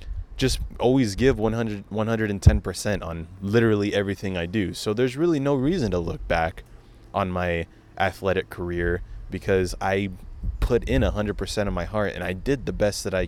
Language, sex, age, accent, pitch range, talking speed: English, male, 20-39, American, 90-120 Hz, 165 wpm